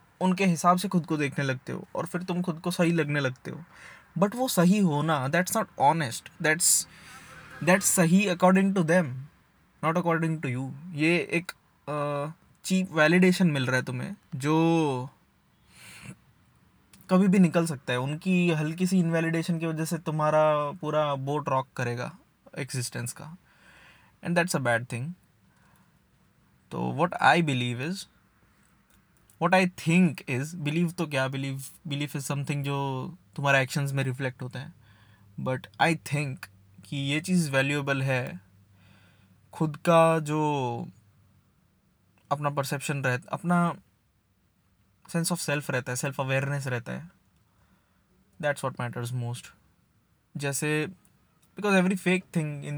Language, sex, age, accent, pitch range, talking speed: Hindi, male, 20-39, native, 130-170 Hz, 140 wpm